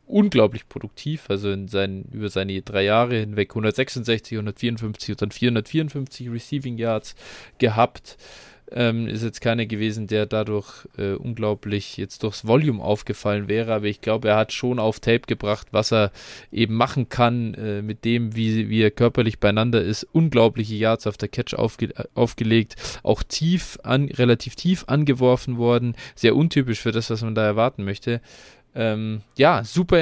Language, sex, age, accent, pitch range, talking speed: German, male, 20-39, German, 110-130 Hz, 150 wpm